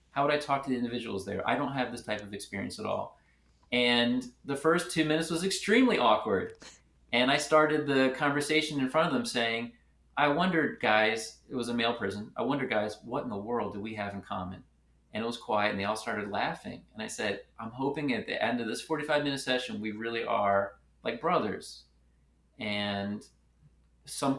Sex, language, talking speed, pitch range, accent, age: male, English, 205 wpm, 105-135 Hz, American, 30-49